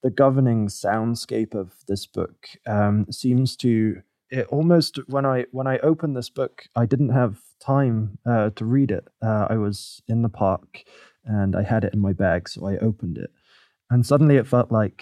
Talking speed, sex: 190 wpm, male